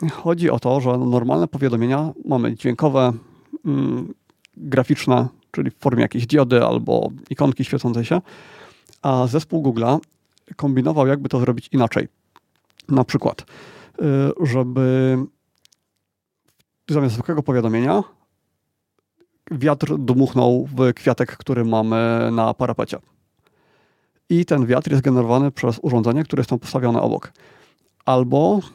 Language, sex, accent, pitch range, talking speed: Polish, male, native, 125-145 Hz, 110 wpm